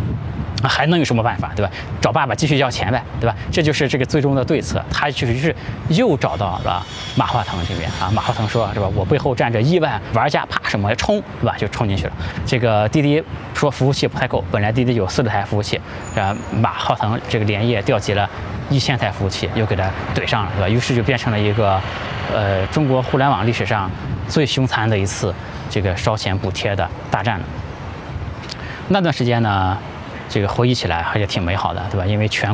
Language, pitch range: Chinese, 100-125 Hz